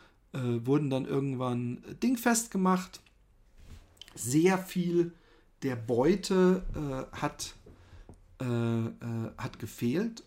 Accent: German